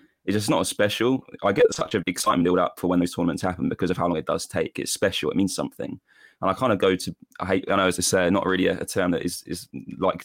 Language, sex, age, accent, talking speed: English, male, 20-39, British, 305 wpm